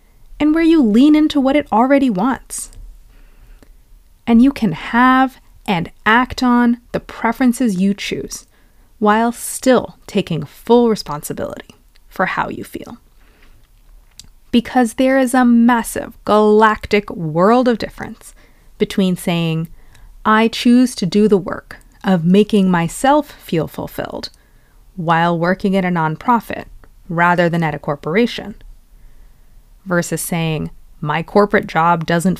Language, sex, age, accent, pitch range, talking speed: English, female, 30-49, American, 170-240 Hz, 125 wpm